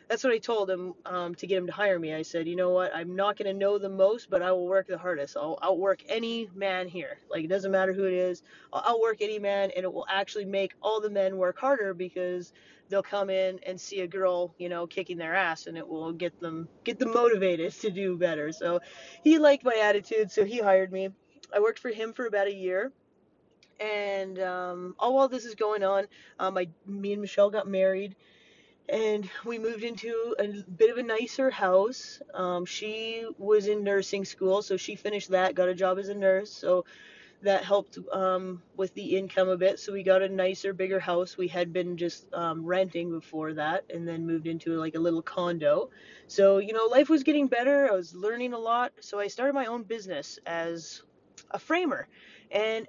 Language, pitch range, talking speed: English, 180-215 Hz, 220 wpm